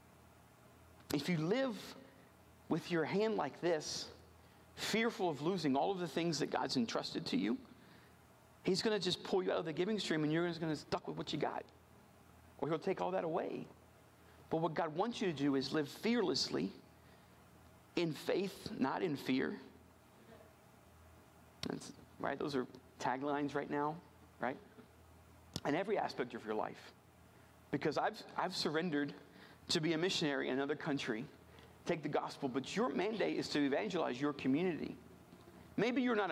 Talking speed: 165 wpm